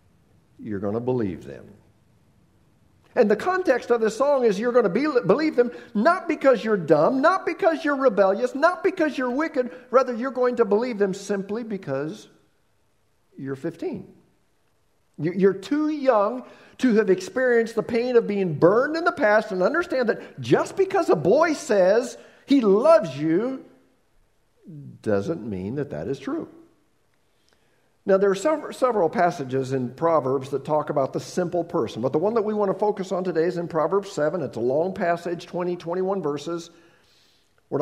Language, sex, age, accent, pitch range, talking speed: English, male, 50-69, American, 155-245 Hz, 165 wpm